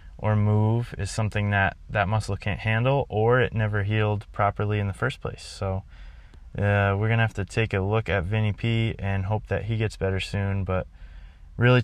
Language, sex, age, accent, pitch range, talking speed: English, male, 20-39, American, 95-110 Hz, 205 wpm